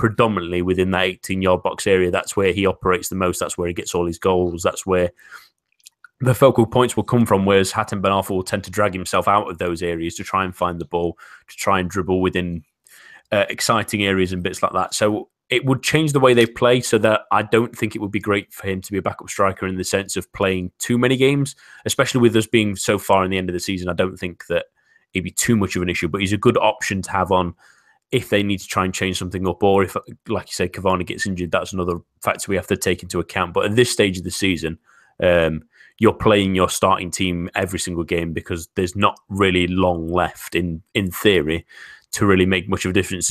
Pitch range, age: 90-105 Hz, 30-49